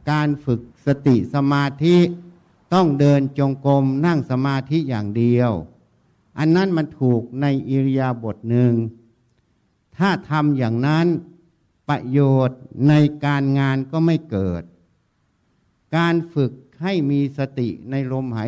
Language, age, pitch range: Thai, 60-79, 125-150 Hz